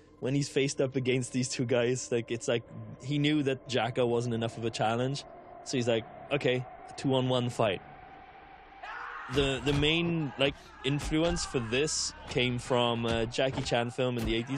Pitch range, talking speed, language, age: 110-130 Hz, 175 wpm, English, 20-39